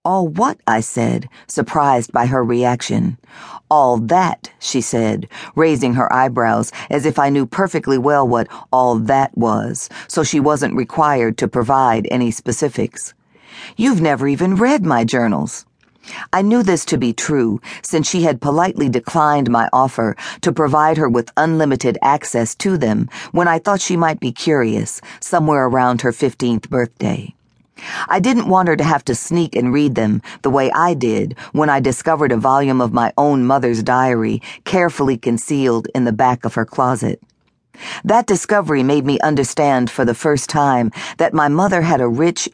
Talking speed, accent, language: 170 wpm, American, English